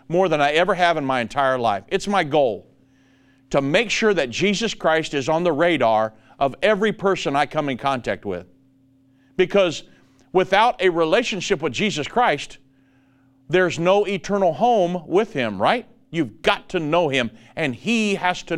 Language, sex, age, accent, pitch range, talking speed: English, male, 50-69, American, 135-200 Hz, 170 wpm